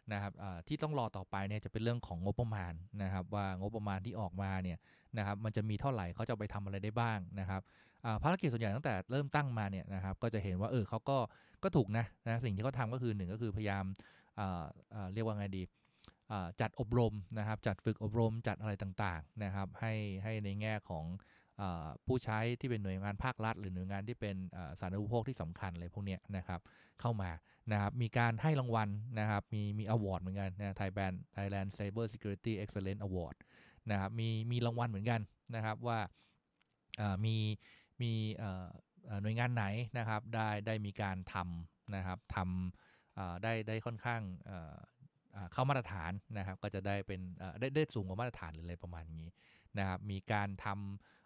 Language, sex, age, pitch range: English, male, 20-39, 95-115 Hz